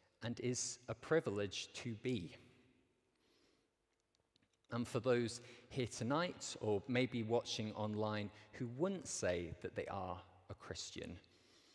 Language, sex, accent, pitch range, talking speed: English, male, British, 100-130 Hz, 115 wpm